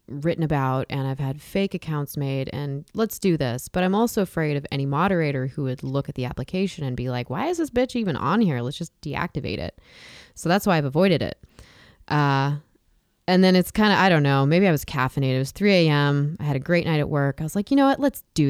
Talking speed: 250 wpm